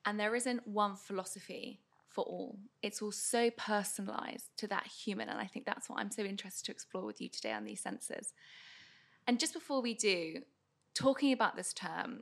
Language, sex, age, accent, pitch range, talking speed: English, female, 20-39, British, 190-230 Hz, 190 wpm